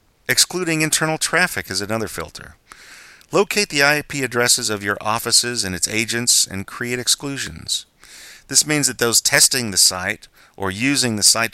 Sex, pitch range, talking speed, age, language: male, 90-135 Hz, 155 wpm, 40-59, English